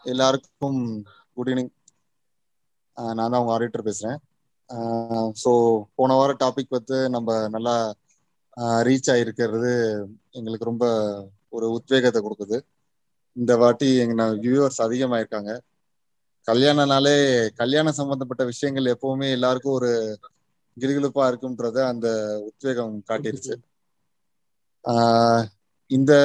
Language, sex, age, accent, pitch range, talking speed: Tamil, male, 20-39, native, 115-140 Hz, 95 wpm